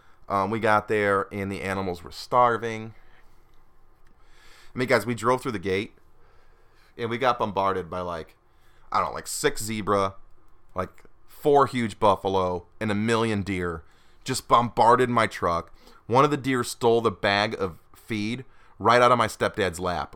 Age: 30-49